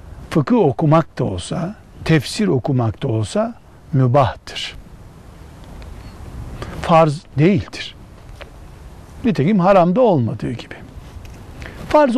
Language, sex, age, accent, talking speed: Turkish, male, 60-79, native, 80 wpm